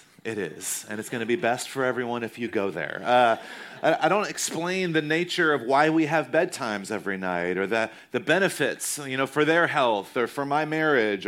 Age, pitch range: 30-49, 115-155 Hz